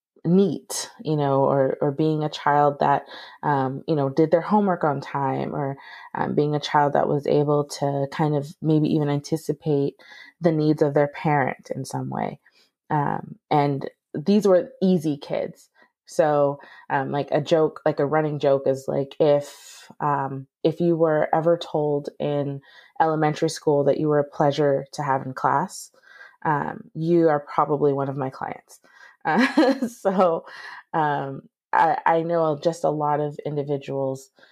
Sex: female